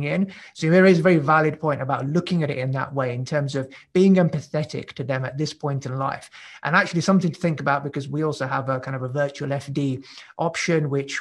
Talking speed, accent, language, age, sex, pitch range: 235 wpm, British, English, 30-49, male, 140-165 Hz